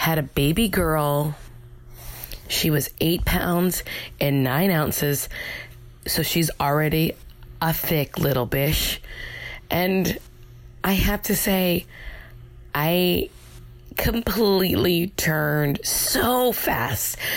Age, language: 20-39, English